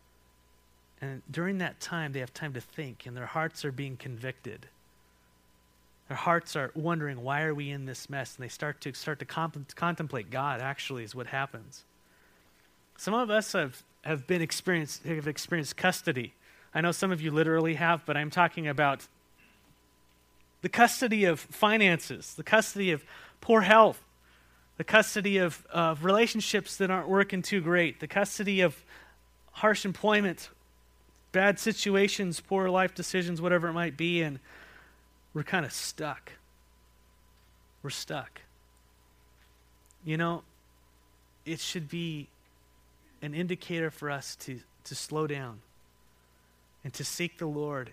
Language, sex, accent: English, male, American